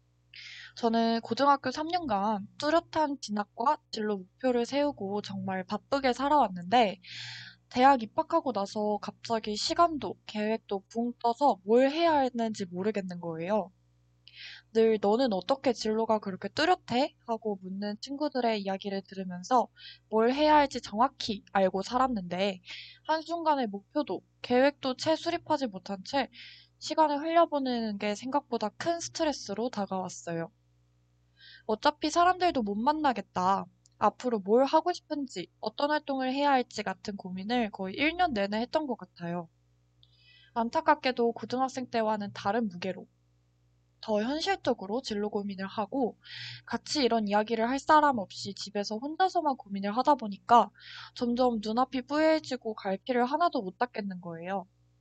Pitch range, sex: 195-275 Hz, female